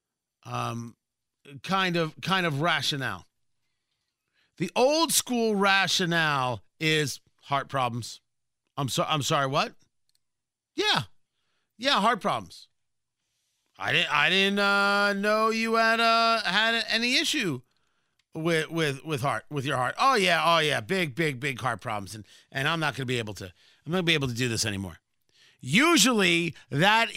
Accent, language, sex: American, English, male